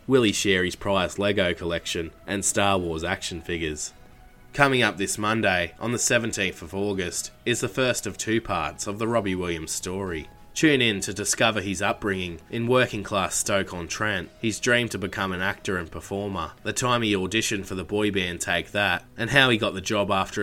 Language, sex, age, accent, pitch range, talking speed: English, male, 20-39, Australian, 90-105 Hz, 190 wpm